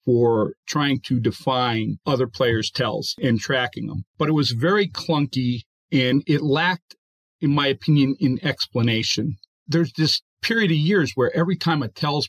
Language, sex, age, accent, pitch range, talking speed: English, male, 40-59, American, 120-155 Hz, 160 wpm